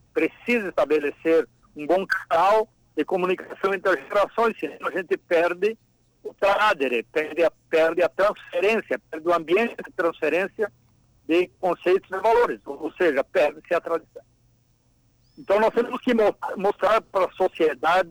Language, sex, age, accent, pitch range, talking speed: Portuguese, male, 60-79, Brazilian, 145-205 Hz, 145 wpm